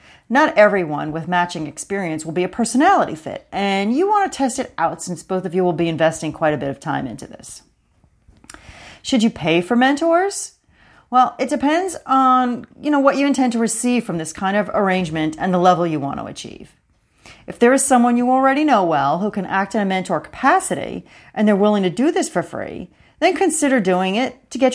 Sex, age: female, 40-59